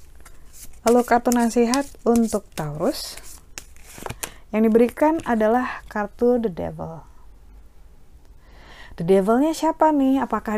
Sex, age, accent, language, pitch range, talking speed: female, 30-49, native, Indonesian, 175-230 Hz, 90 wpm